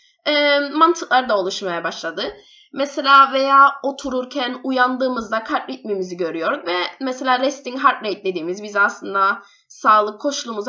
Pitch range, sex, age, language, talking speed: 200-290 Hz, female, 10-29, Turkish, 120 wpm